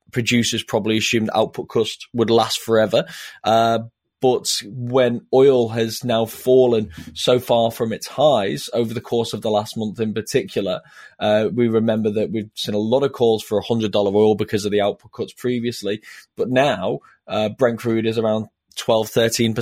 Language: English